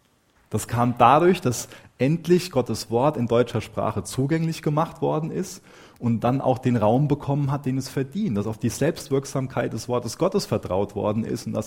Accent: German